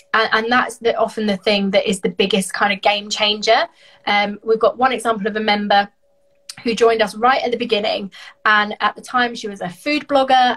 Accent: British